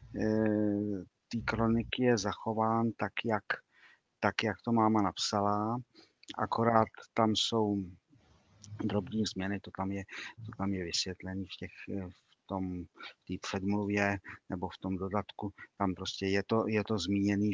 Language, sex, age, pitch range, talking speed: Czech, male, 50-69, 90-105 Hz, 120 wpm